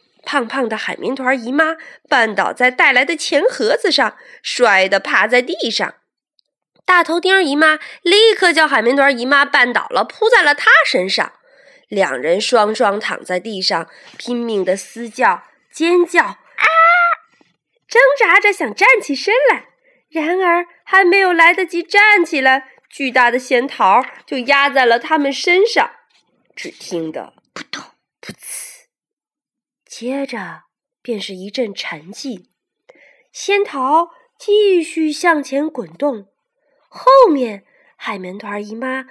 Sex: female